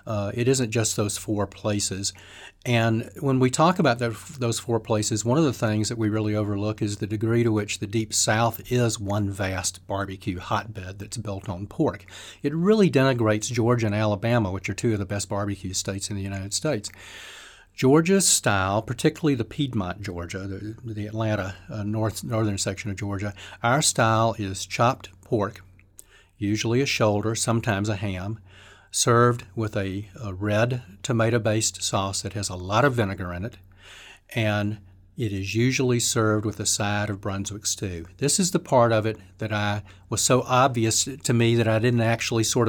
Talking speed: 185 wpm